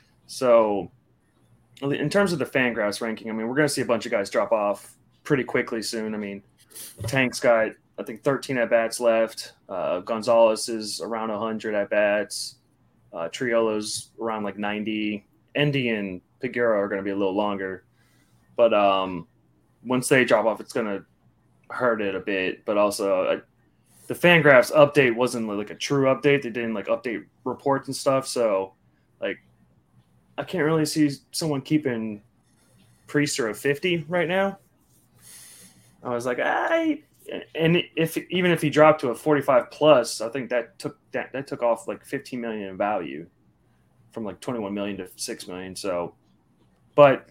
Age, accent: 20-39, American